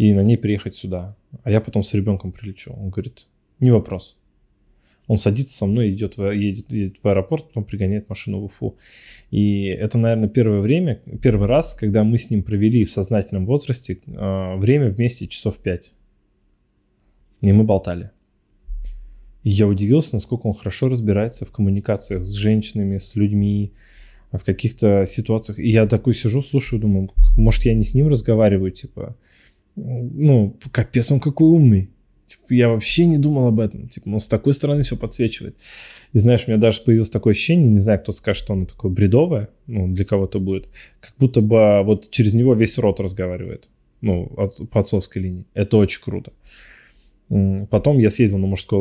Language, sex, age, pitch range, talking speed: Russian, male, 20-39, 100-120 Hz, 175 wpm